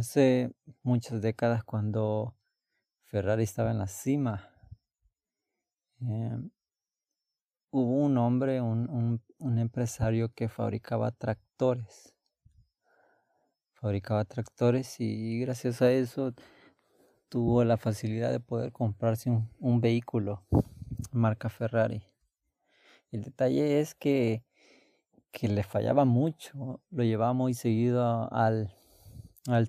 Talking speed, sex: 110 wpm, male